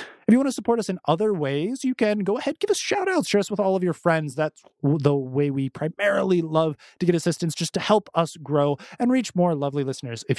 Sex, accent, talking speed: male, American, 255 wpm